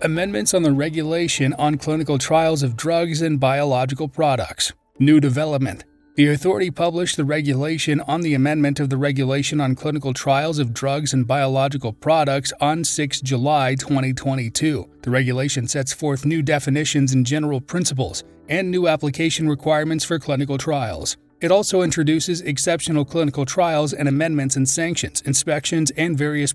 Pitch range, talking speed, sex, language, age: 135-160 Hz, 150 wpm, male, English, 30-49